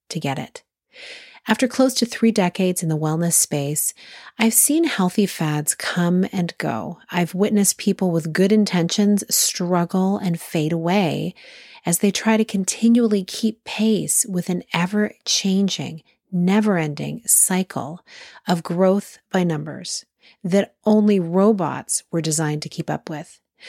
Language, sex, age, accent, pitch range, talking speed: English, female, 40-59, American, 165-210 Hz, 135 wpm